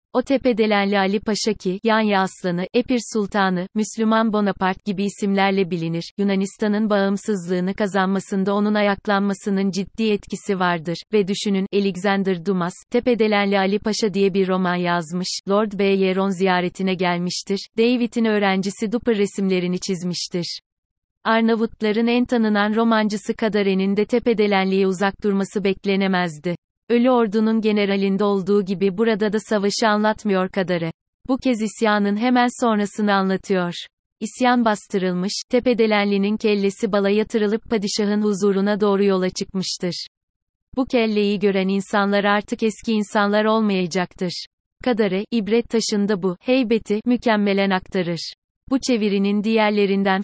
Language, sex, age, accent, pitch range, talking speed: Turkish, female, 30-49, native, 190-220 Hz, 115 wpm